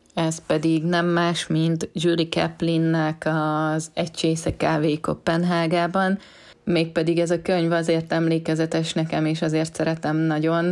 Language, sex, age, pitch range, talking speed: Hungarian, female, 20-39, 155-170 Hz, 130 wpm